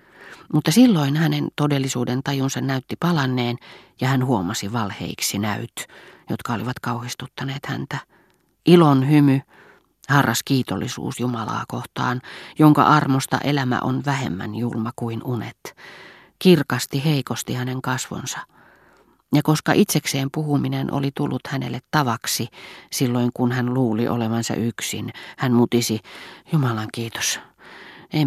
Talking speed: 115 wpm